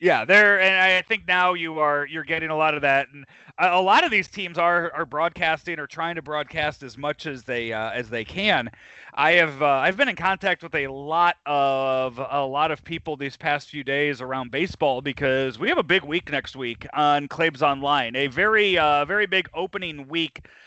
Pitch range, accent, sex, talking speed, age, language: 140-175 Hz, American, male, 220 wpm, 30-49, English